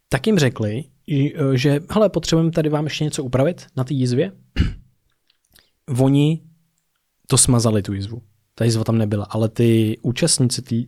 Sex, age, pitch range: male, 20-39, 115-140 Hz